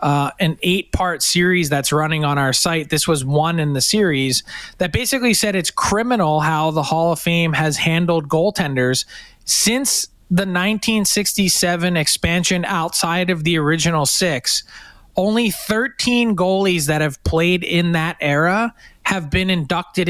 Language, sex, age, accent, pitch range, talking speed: English, male, 20-39, American, 150-190 Hz, 150 wpm